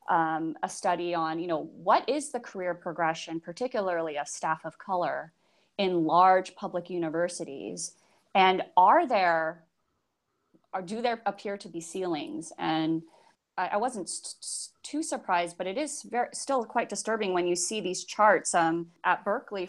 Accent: American